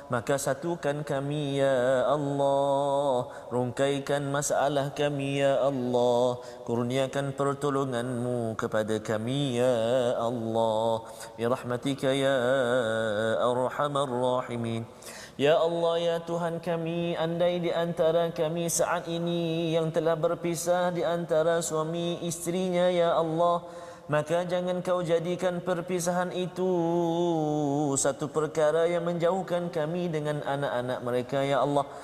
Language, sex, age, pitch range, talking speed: Malayalam, male, 30-49, 120-165 Hz, 100 wpm